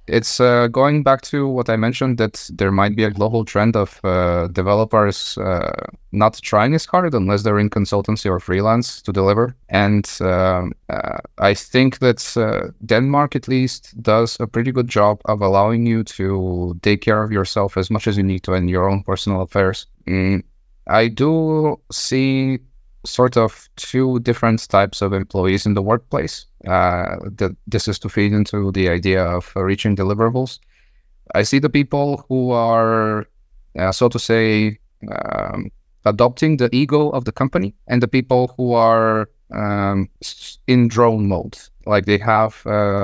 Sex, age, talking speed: male, 20-39, 165 wpm